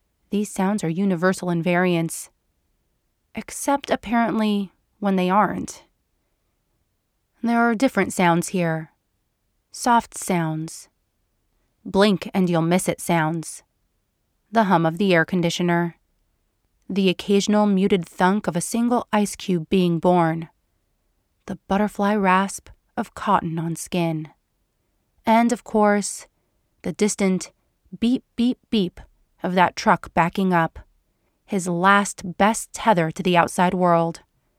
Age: 30-49